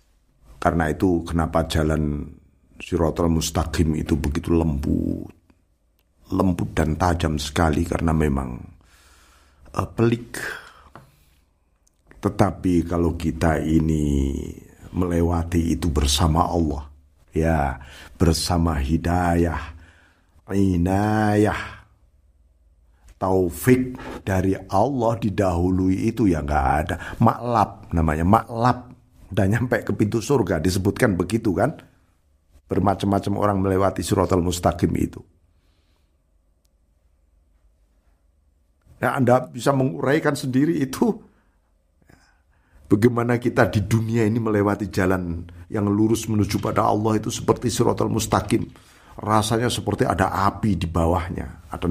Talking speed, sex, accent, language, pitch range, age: 95 wpm, male, native, Indonesian, 80-100 Hz, 50-69